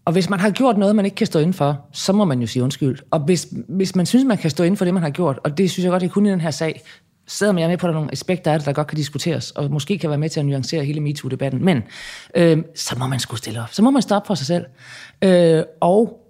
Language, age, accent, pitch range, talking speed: Danish, 30-49, native, 130-180 Hz, 315 wpm